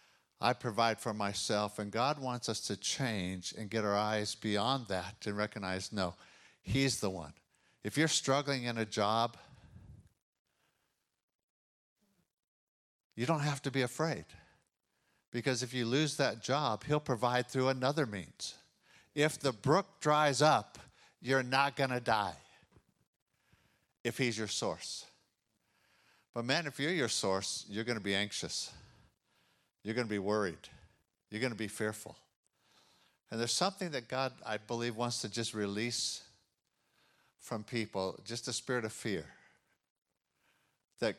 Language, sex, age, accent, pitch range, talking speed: English, male, 50-69, American, 100-130 Hz, 145 wpm